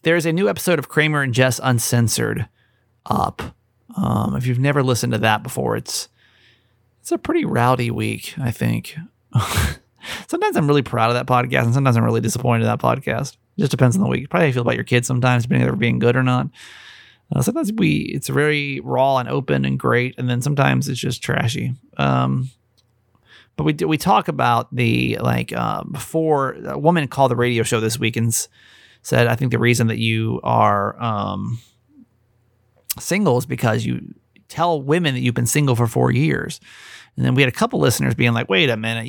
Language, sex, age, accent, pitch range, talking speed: English, male, 30-49, American, 115-145 Hz, 200 wpm